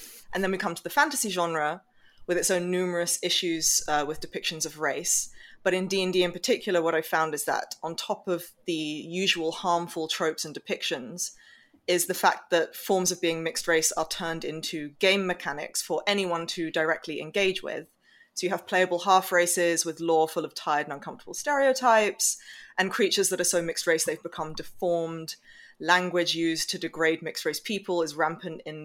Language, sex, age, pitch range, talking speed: English, female, 20-39, 160-190 Hz, 190 wpm